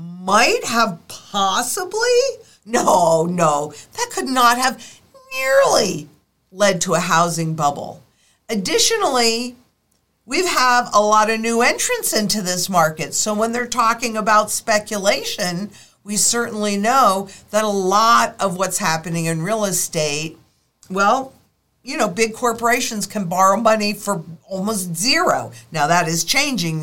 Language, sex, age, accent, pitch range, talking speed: English, female, 50-69, American, 195-275 Hz, 130 wpm